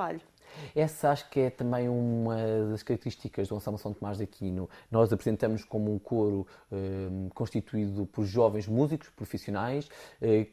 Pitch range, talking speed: 105-140 Hz, 155 wpm